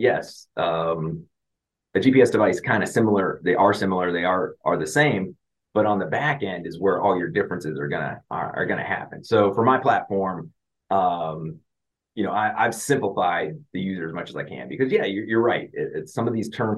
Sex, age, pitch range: male, 30-49, 90-110 Hz